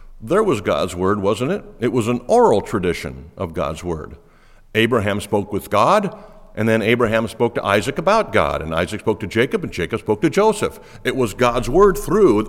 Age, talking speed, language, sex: 60-79, 195 wpm, English, male